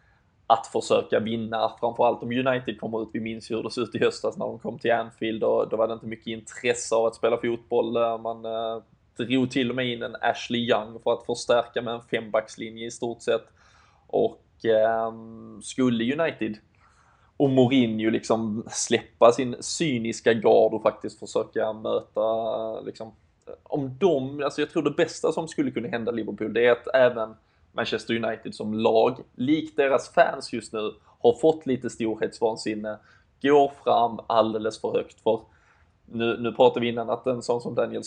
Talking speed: 170 wpm